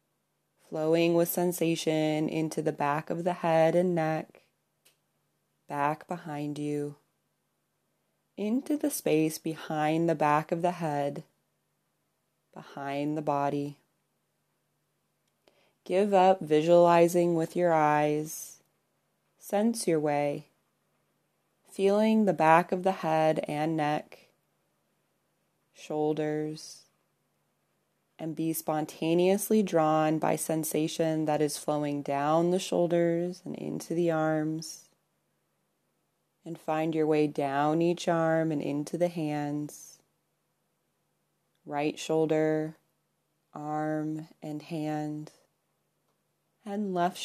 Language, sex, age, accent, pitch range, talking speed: English, female, 20-39, American, 150-170 Hz, 100 wpm